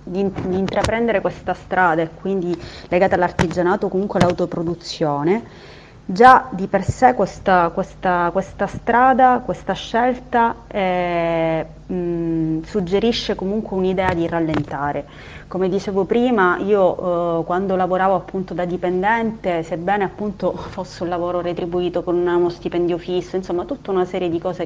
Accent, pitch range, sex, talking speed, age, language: native, 170-190 Hz, female, 135 wpm, 30-49, Italian